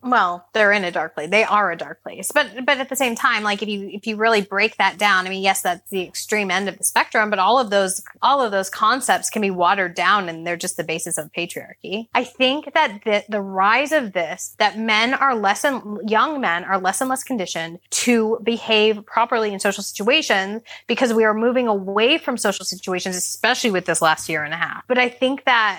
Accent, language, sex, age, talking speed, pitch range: American, English, female, 20-39, 235 wpm, 195-245 Hz